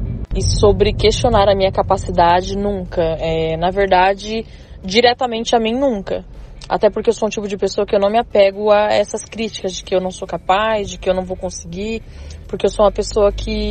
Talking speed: 210 wpm